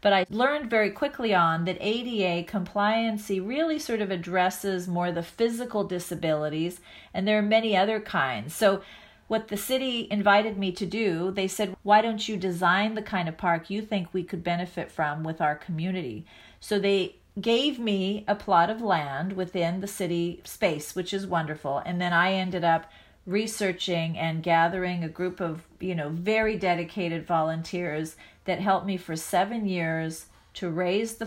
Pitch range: 175-215 Hz